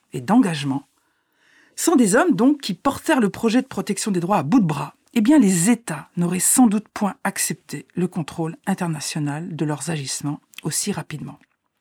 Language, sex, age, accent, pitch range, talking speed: French, female, 50-69, French, 185-275 Hz, 185 wpm